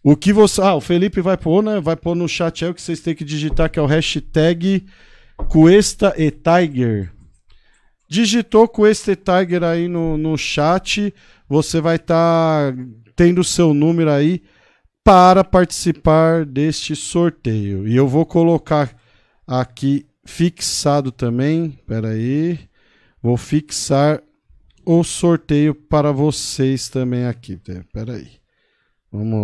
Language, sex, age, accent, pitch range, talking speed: Portuguese, male, 50-69, Brazilian, 125-175 Hz, 140 wpm